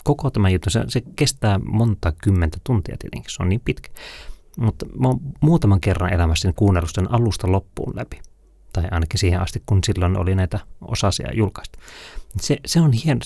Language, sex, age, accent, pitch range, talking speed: Finnish, male, 30-49, native, 90-120 Hz, 175 wpm